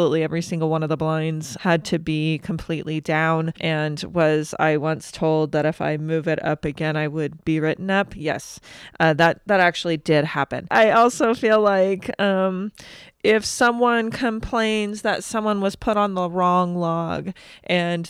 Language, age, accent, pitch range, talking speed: English, 30-49, American, 160-190 Hz, 170 wpm